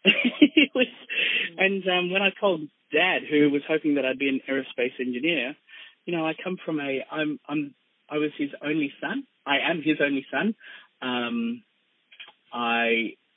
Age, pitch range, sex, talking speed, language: 30-49, 125-180 Hz, male, 160 wpm, English